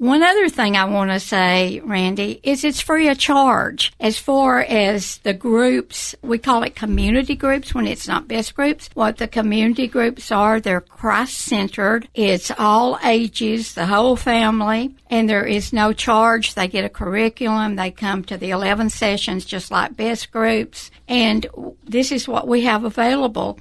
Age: 60-79